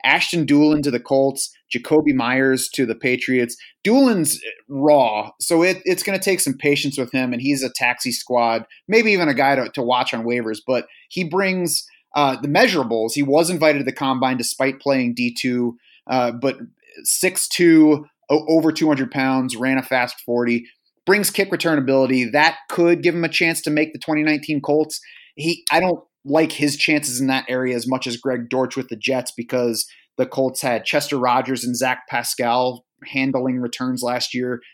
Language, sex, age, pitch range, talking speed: English, male, 30-49, 125-150 Hz, 185 wpm